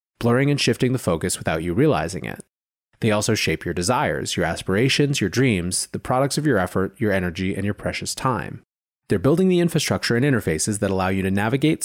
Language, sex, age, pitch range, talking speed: English, male, 30-49, 95-140 Hz, 205 wpm